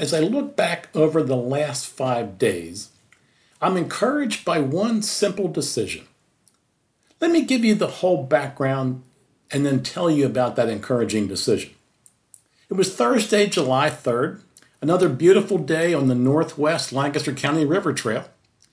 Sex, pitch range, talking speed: male, 125-180 Hz, 145 wpm